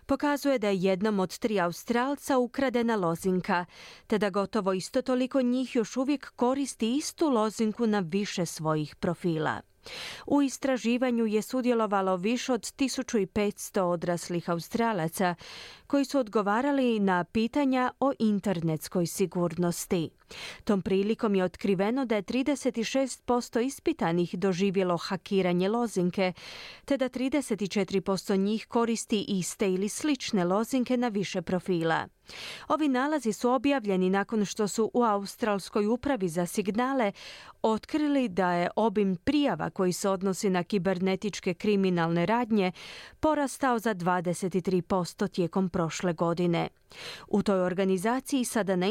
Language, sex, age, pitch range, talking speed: Croatian, female, 30-49, 185-250 Hz, 120 wpm